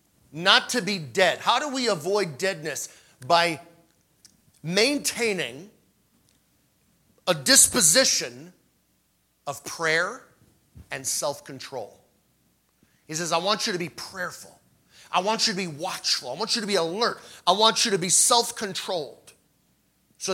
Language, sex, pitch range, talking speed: English, male, 125-190 Hz, 130 wpm